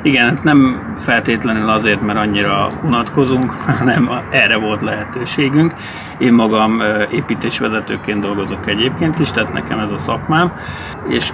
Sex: male